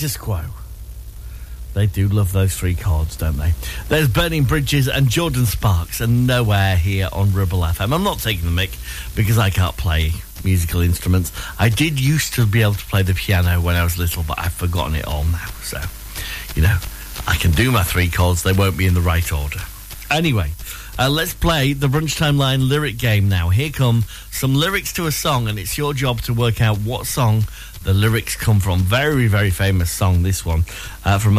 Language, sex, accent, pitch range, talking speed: English, male, British, 90-130 Hz, 205 wpm